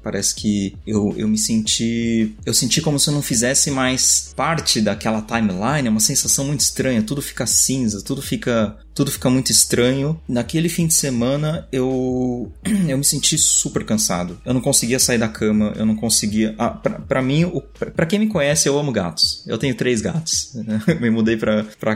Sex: male